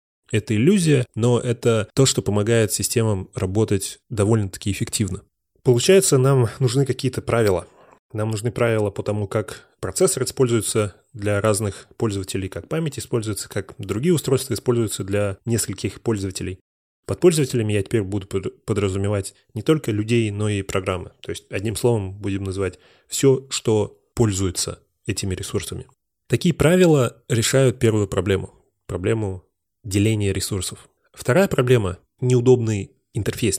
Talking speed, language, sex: 130 wpm, Russian, male